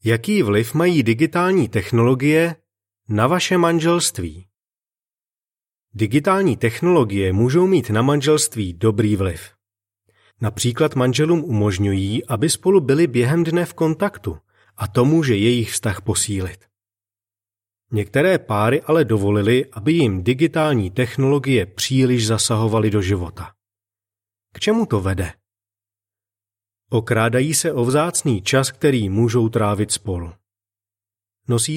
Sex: male